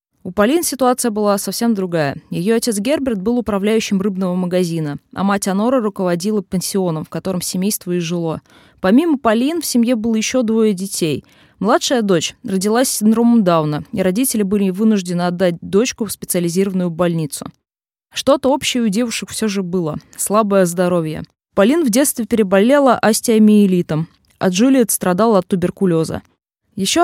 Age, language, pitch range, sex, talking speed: 20-39, Russian, 180-230 Hz, female, 150 wpm